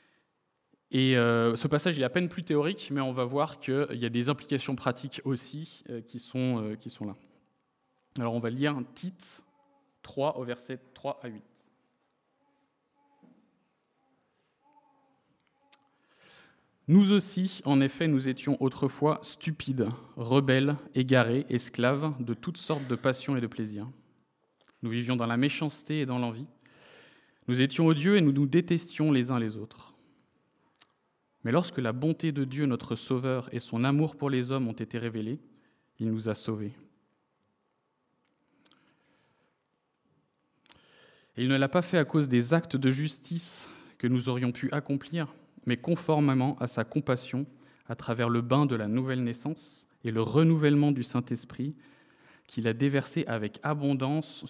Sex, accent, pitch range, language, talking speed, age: male, French, 120-155 Hz, French, 155 wpm, 20-39